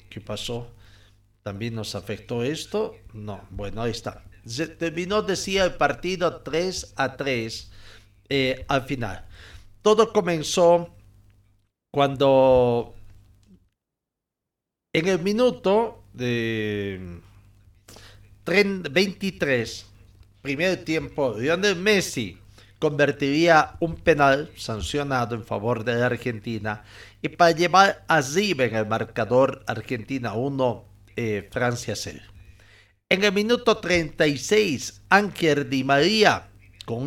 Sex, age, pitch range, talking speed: male, 50-69, 105-155 Hz, 100 wpm